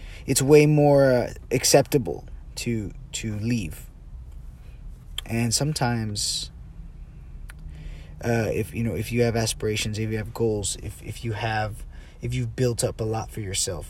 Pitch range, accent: 75-125 Hz, American